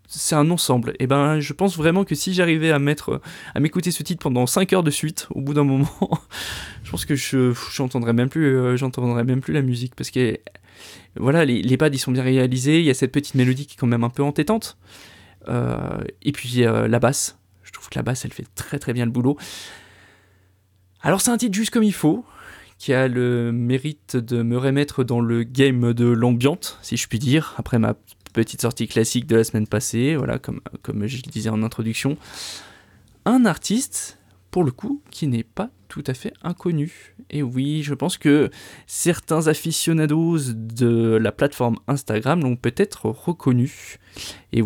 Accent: French